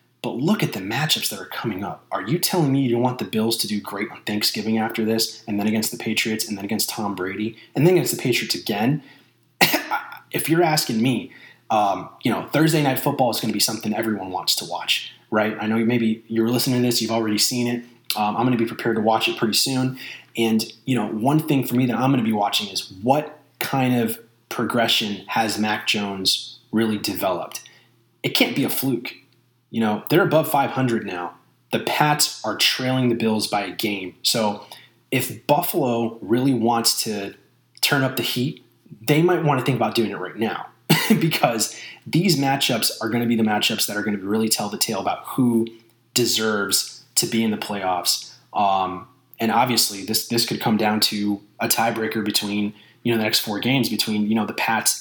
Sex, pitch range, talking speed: male, 110-125 Hz, 210 wpm